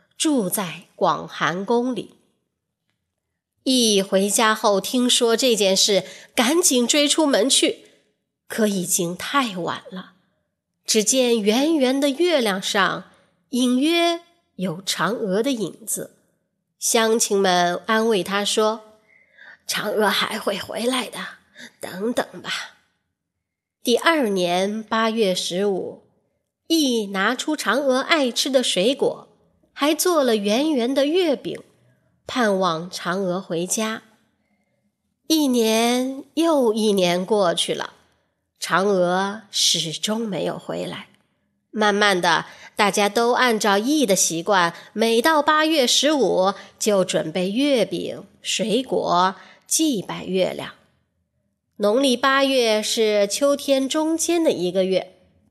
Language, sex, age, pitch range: Chinese, female, 20-39, 190-270 Hz